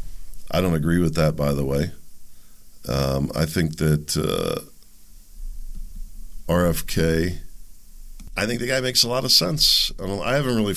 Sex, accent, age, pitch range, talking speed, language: male, American, 50-69, 75-90 Hz, 150 wpm, English